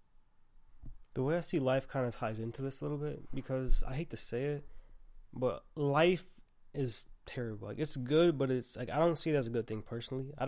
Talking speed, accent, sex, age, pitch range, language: 225 wpm, American, male, 20-39, 115-135 Hz, English